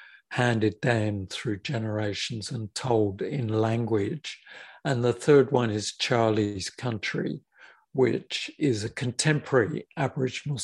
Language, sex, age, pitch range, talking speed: English, male, 60-79, 110-140 Hz, 115 wpm